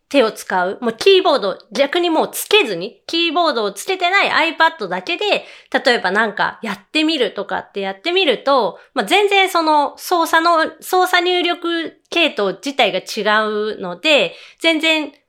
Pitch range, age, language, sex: 220-345 Hz, 30-49, Japanese, female